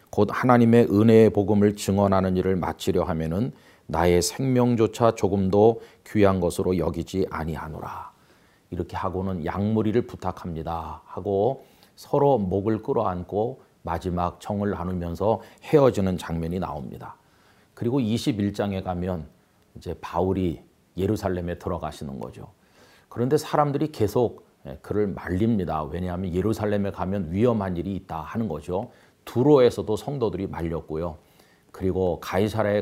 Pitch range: 85-105 Hz